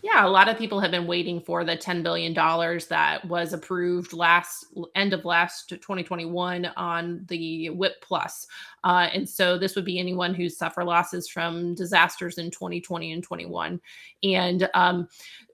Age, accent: 20-39, American